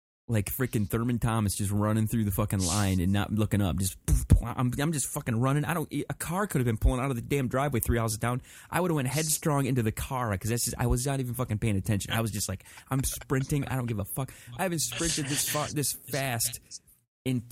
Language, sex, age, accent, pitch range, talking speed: English, male, 30-49, American, 105-130 Hz, 260 wpm